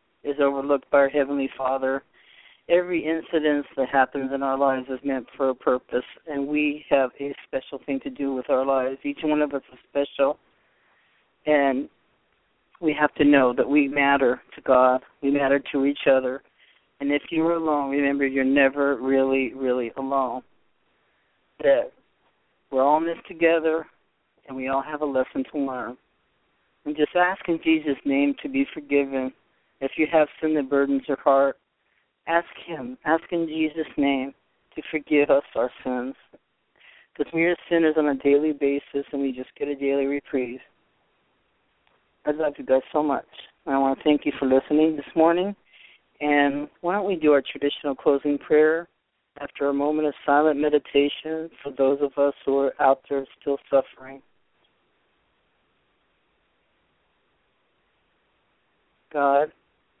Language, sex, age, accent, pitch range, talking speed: English, male, 40-59, American, 135-155 Hz, 160 wpm